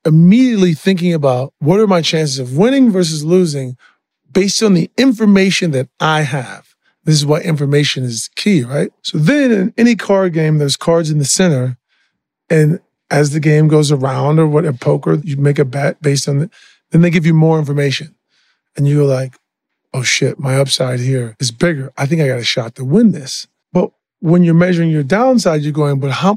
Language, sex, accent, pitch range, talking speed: English, male, American, 140-180 Hz, 200 wpm